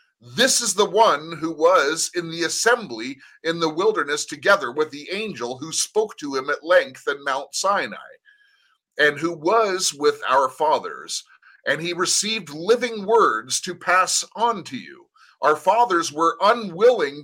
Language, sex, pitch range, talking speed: English, male, 160-235 Hz, 155 wpm